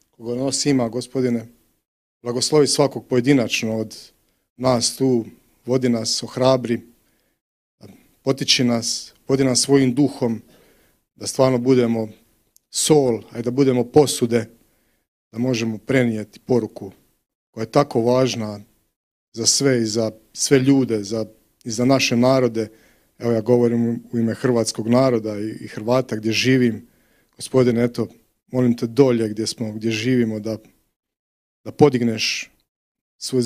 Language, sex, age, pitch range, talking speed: Polish, male, 40-59, 115-130 Hz, 125 wpm